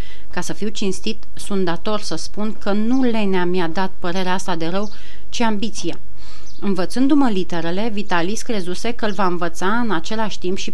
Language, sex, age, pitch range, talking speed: Romanian, female, 30-49, 180-230 Hz, 185 wpm